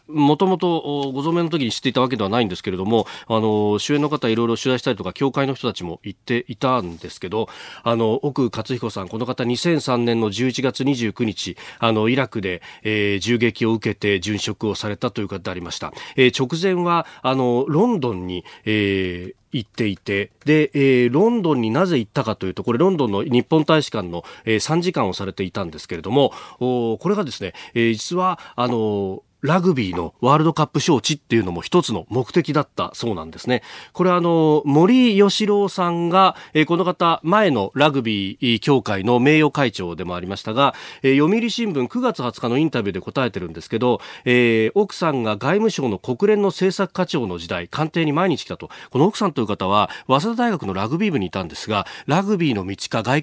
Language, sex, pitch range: Japanese, male, 105-160 Hz